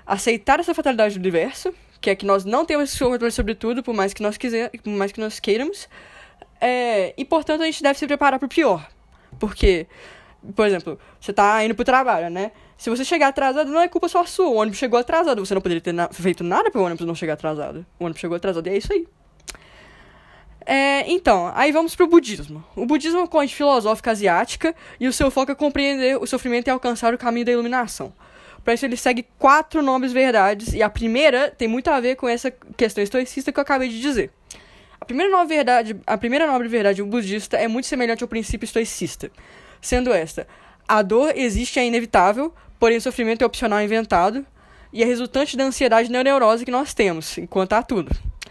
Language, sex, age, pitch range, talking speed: Portuguese, female, 10-29, 215-275 Hz, 205 wpm